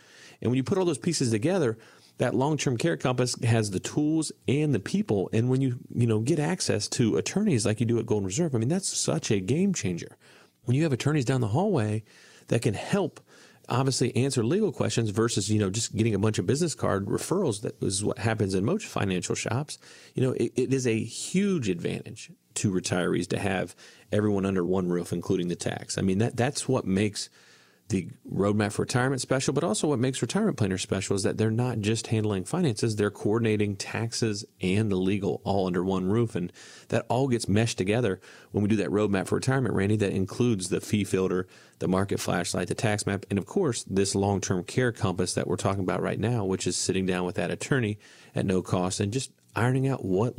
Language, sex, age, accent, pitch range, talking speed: English, male, 40-59, American, 100-130 Hz, 215 wpm